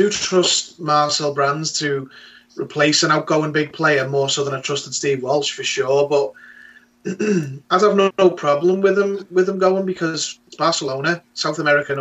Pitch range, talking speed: 140-155 Hz, 180 wpm